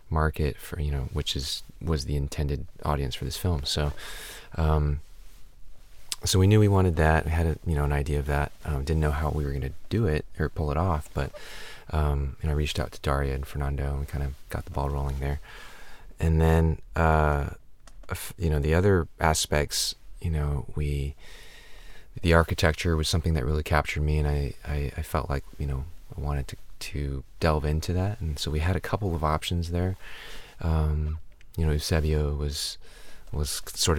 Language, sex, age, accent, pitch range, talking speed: English, male, 30-49, American, 70-85 Hz, 195 wpm